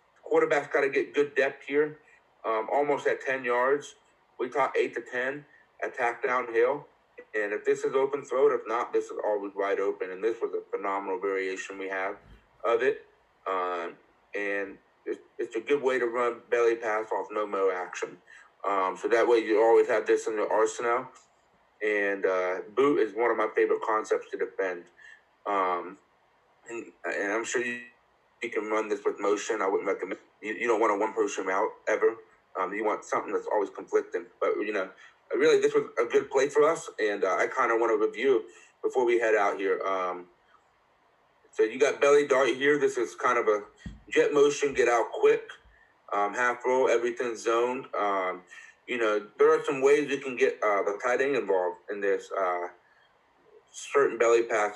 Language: English